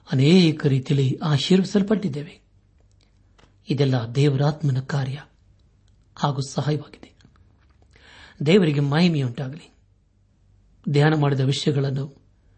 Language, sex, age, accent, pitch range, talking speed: Kannada, male, 60-79, native, 100-155 Hz, 60 wpm